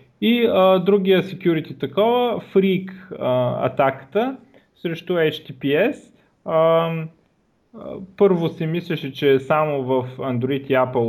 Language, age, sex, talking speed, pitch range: Bulgarian, 30-49, male, 115 wpm, 130-185 Hz